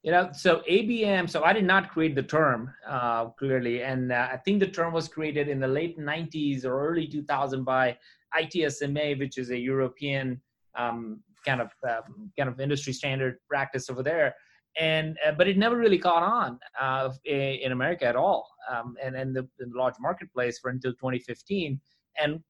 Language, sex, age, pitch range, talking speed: English, male, 30-49, 130-155 Hz, 185 wpm